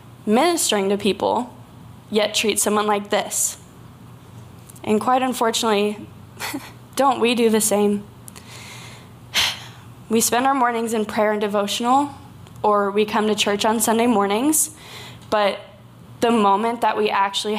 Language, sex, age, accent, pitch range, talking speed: English, female, 10-29, American, 205-250 Hz, 130 wpm